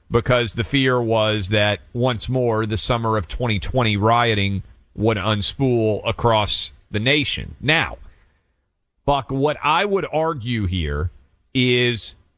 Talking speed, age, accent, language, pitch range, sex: 120 wpm, 40-59, American, English, 95-135 Hz, male